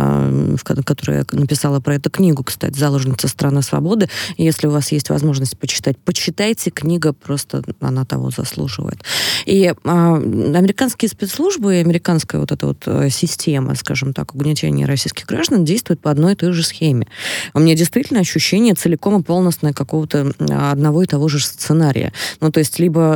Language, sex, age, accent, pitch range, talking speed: Russian, female, 20-39, native, 130-160 Hz, 155 wpm